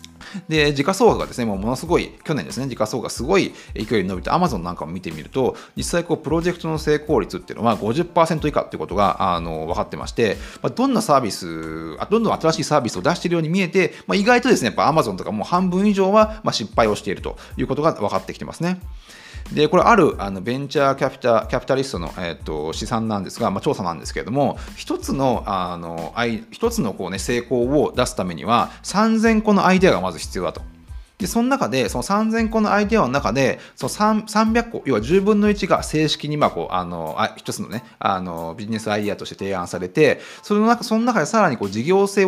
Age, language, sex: 30-49, Japanese, male